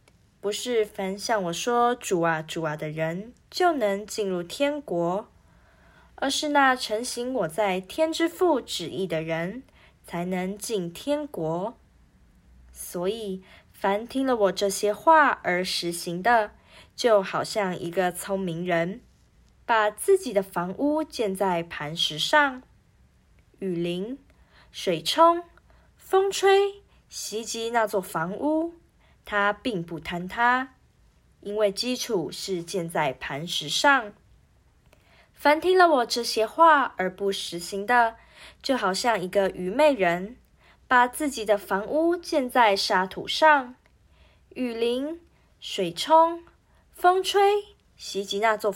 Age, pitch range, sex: 20-39, 180-270 Hz, female